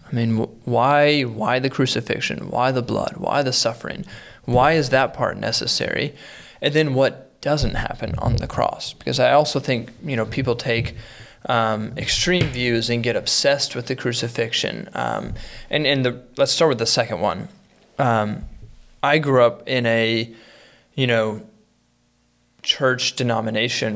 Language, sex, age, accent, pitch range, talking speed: English, male, 20-39, American, 115-130 Hz, 155 wpm